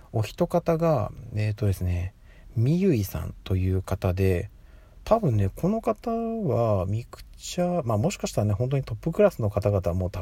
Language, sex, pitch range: Japanese, male, 95-130 Hz